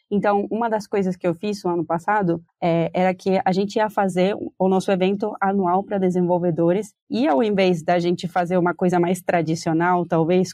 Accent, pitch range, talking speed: Brazilian, 170-200 Hz, 195 wpm